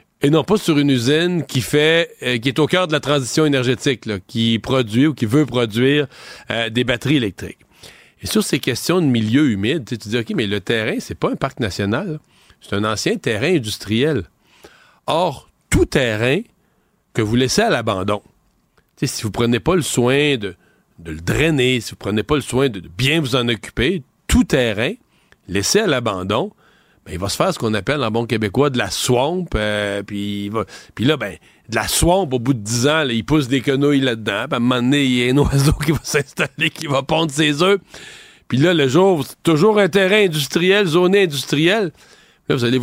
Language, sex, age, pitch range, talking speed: French, male, 40-59, 115-155 Hz, 210 wpm